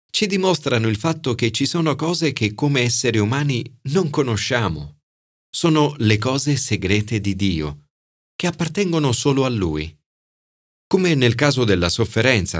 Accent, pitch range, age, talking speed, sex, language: native, 95-140 Hz, 40-59, 145 wpm, male, Italian